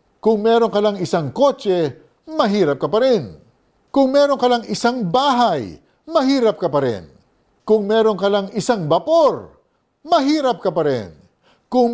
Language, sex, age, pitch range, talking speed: Filipino, male, 50-69, 130-225 Hz, 155 wpm